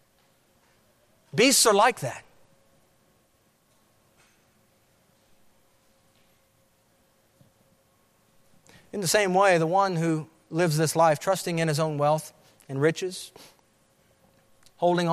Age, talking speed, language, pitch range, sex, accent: 50-69, 85 wpm, English, 140-185 Hz, male, American